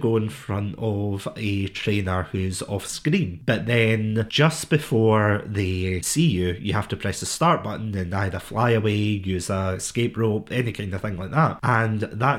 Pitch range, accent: 100-135 Hz, British